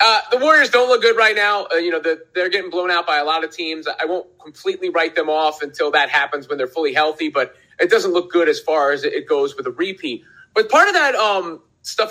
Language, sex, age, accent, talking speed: English, male, 30-49, American, 265 wpm